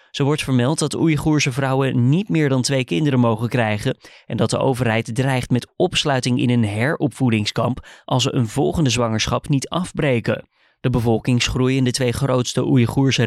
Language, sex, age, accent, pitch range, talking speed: Dutch, male, 20-39, Dutch, 120-150 Hz, 165 wpm